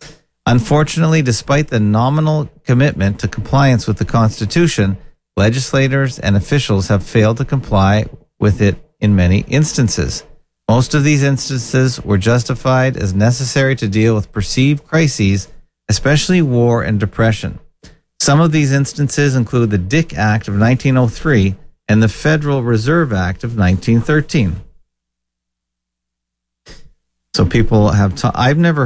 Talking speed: 130 wpm